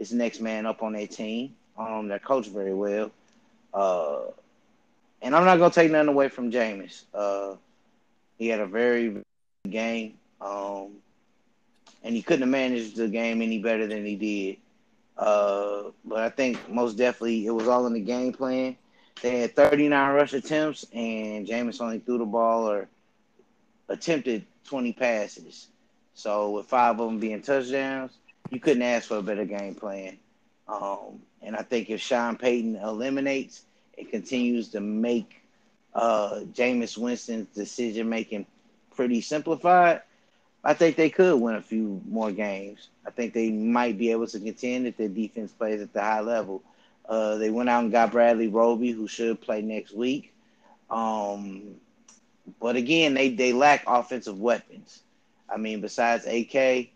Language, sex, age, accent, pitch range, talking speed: English, male, 20-39, American, 110-130 Hz, 165 wpm